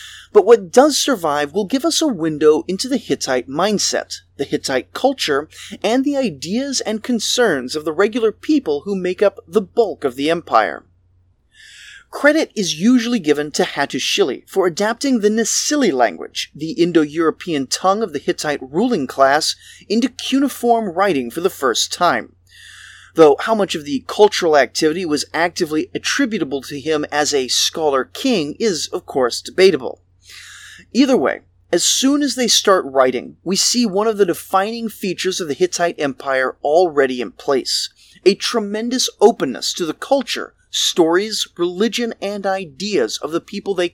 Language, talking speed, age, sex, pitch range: English, 155 wpm, 30-49, male, 155-240 Hz